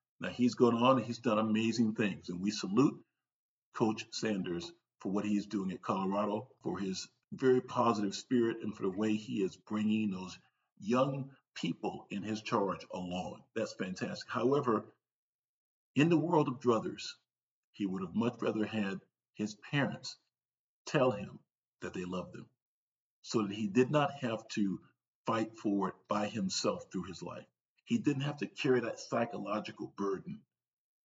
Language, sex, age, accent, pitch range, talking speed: English, male, 50-69, American, 105-130 Hz, 160 wpm